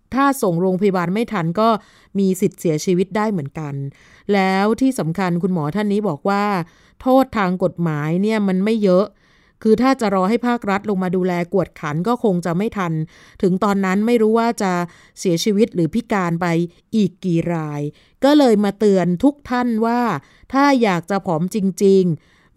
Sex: female